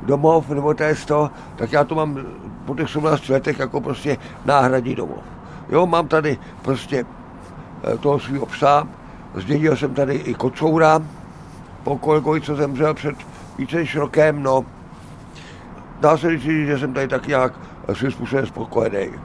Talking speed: 145 wpm